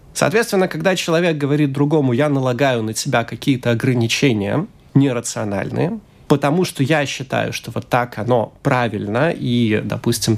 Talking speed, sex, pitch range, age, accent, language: 135 wpm, male, 115-150 Hz, 30-49, native, Russian